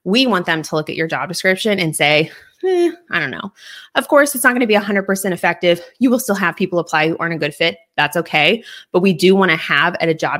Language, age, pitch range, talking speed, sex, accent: English, 20-39, 165-215 Hz, 260 wpm, female, American